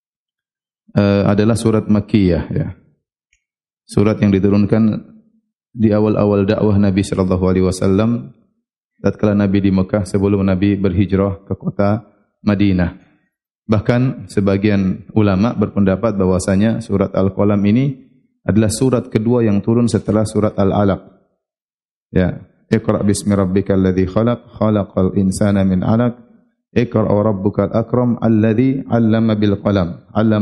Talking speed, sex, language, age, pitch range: 110 wpm, male, Indonesian, 30-49, 100-115 Hz